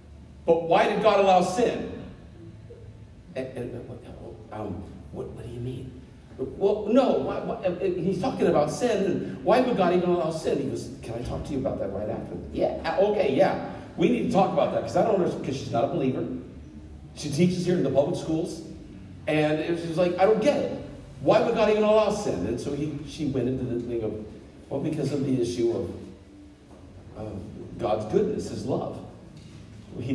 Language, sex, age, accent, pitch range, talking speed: English, male, 50-69, American, 115-180 Hz, 200 wpm